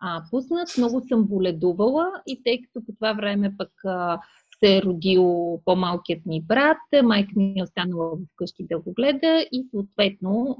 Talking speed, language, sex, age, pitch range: 160 wpm, Bulgarian, female, 30-49, 190-240 Hz